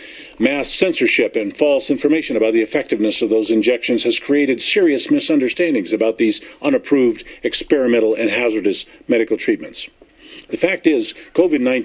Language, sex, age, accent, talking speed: English, male, 50-69, American, 135 wpm